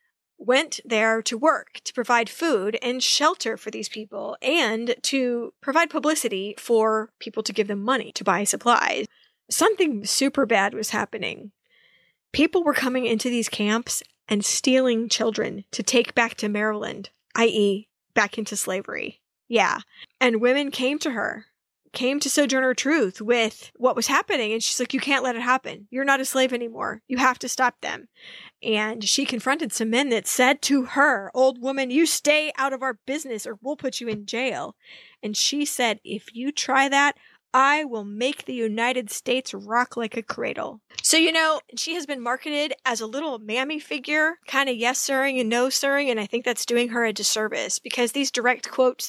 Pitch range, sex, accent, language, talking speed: 225-275 Hz, female, American, English, 185 wpm